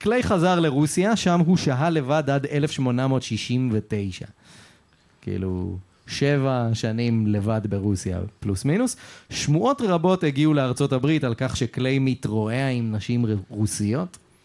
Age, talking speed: 30-49, 110 wpm